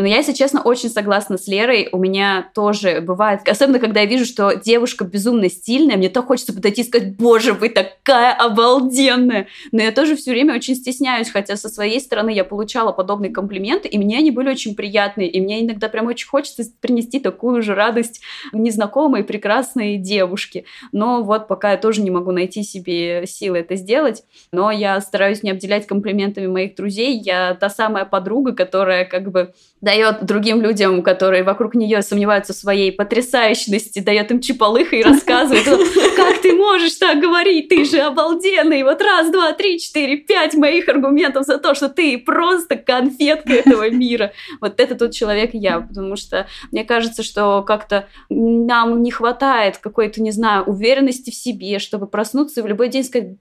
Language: Russian